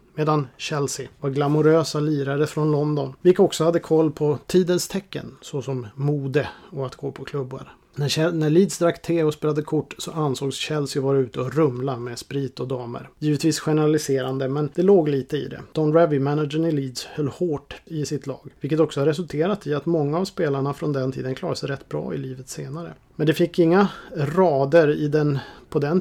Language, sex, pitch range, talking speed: Swedish, male, 135-160 Hz, 200 wpm